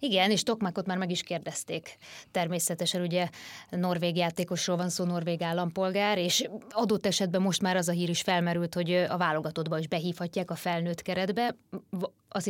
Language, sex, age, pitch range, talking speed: Hungarian, female, 20-39, 170-195 Hz, 165 wpm